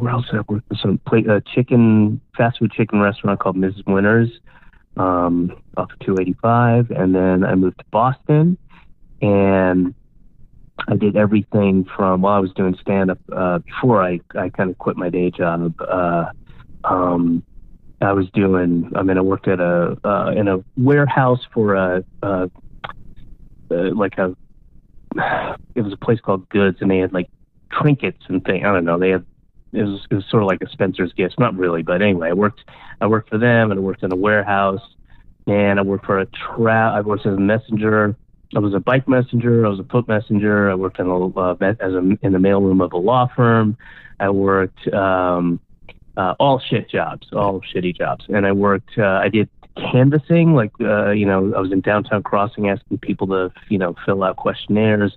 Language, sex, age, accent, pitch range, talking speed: English, male, 30-49, American, 95-110 Hz, 195 wpm